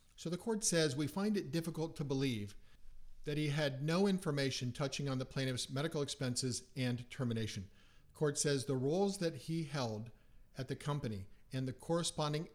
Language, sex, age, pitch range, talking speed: English, male, 50-69, 125-160 Hz, 170 wpm